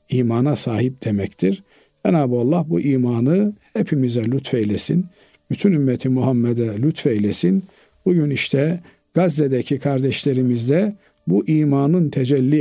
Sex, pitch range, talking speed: male, 130-170 Hz, 95 wpm